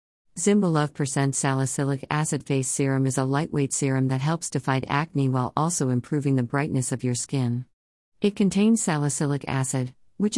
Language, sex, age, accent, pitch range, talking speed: English, female, 50-69, American, 130-155 Hz, 160 wpm